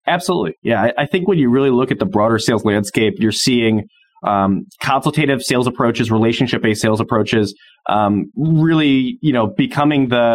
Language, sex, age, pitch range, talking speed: English, male, 20-39, 120-150 Hz, 170 wpm